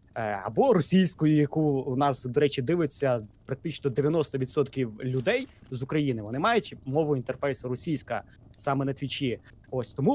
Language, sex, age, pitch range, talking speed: Ukrainian, male, 20-39, 125-160 Hz, 135 wpm